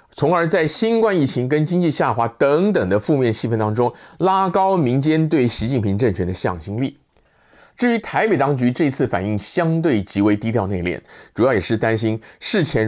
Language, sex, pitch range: Chinese, male, 110-165 Hz